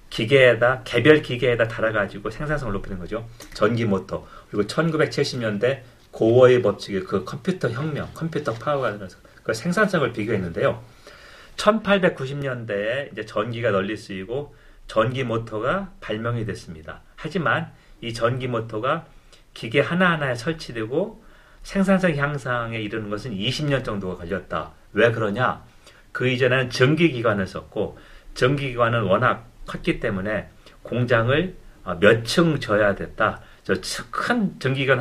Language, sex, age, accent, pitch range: Korean, male, 40-59, native, 110-150 Hz